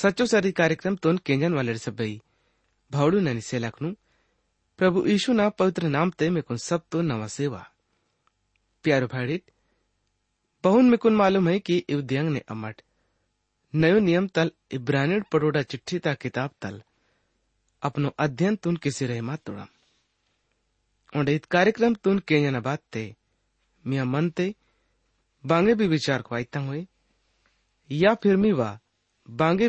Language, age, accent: English, 30-49, Indian